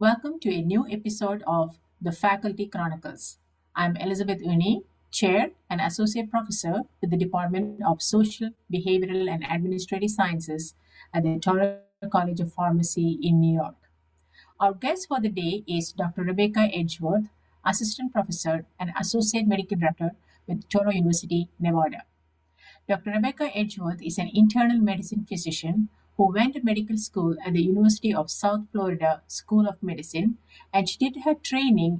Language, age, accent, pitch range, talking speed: English, 50-69, Indian, 170-215 Hz, 150 wpm